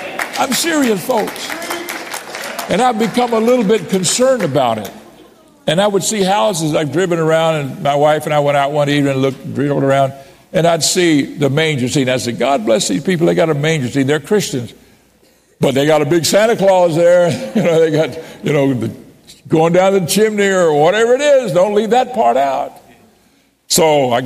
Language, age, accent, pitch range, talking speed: English, 60-79, American, 140-185 Hz, 205 wpm